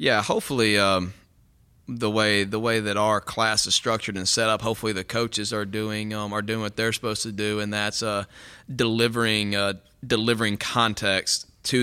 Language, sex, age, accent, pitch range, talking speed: English, male, 30-49, American, 95-110 Hz, 185 wpm